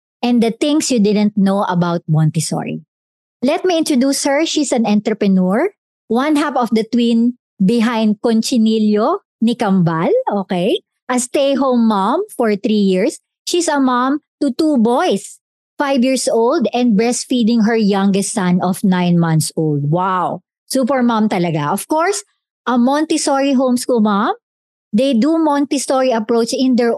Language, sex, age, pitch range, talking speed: English, male, 50-69, 205-280 Hz, 140 wpm